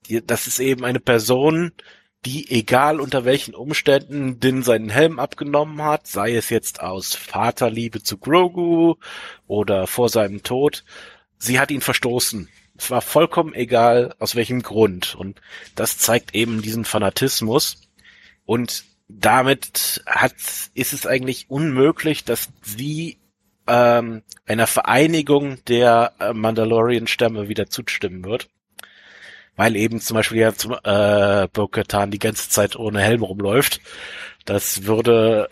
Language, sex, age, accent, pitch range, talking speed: German, male, 30-49, German, 105-130 Hz, 125 wpm